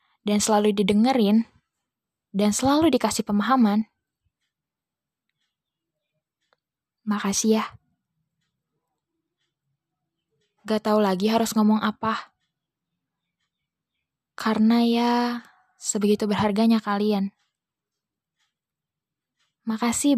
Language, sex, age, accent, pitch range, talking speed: Indonesian, female, 10-29, native, 200-235 Hz, 60 wpm